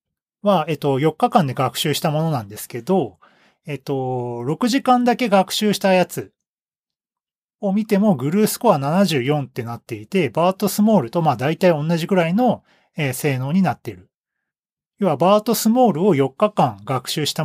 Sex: male